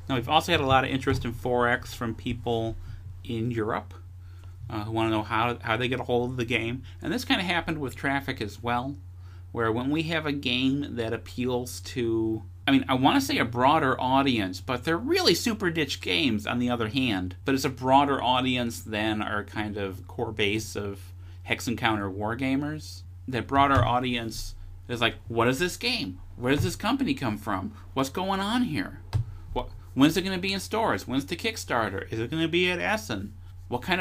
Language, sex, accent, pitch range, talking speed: English, male, American, 95-135 Hz, 205 wpm